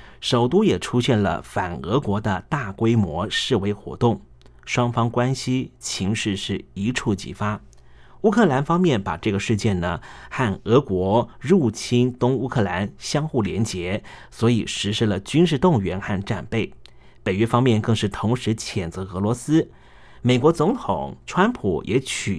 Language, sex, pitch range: Chinese, male, 100-125 Hz